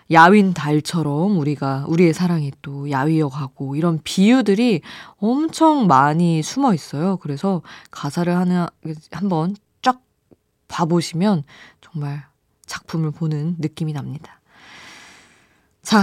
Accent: native